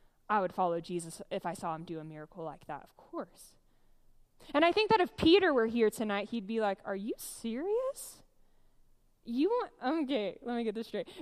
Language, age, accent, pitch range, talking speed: English, 20-39, American, 220-310 Hz, 205 wpm